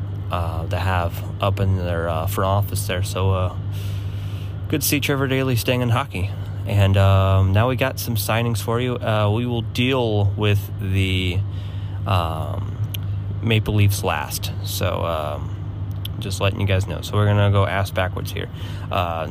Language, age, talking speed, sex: English, 20-39, 170 wpm, male